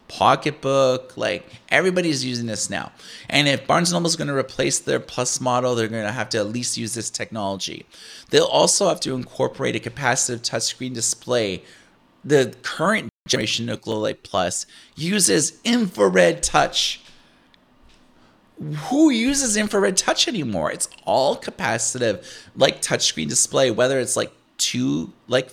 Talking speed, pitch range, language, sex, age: 145 wpm, 110-160 Hz, English, male, 30-49